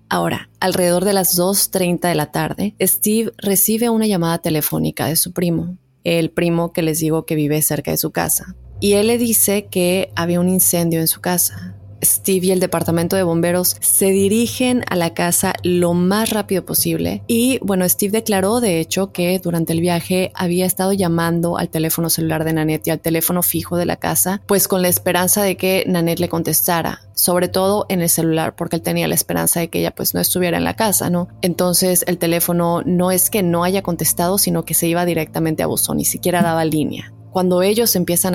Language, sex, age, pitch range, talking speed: Spanish, female, 20-39, 165-185 Hz, 205 wpm